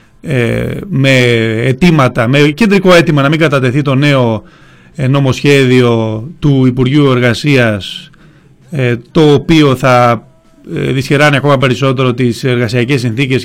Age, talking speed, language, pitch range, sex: 30-49, 105 wpm, Greek, 125-170 Hz, male